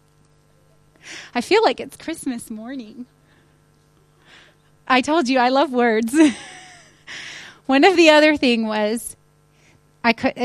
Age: 30-49